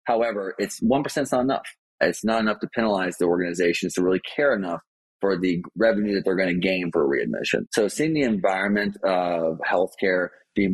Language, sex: English, male